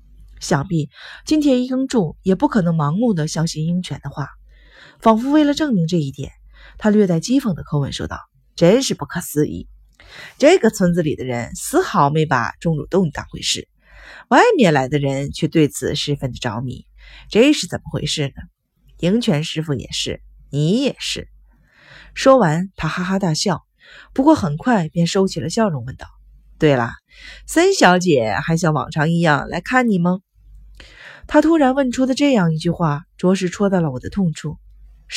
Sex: female